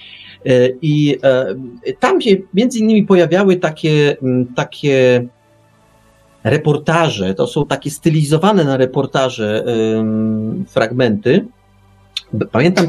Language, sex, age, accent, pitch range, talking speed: Polish, male, 40-59, native, 125-170 Hz, 80 wpm